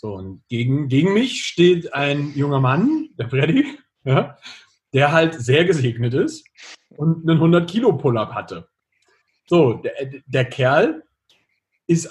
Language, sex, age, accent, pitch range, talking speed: German, male, 40-59, German, 135-195 Hz, 140 wpm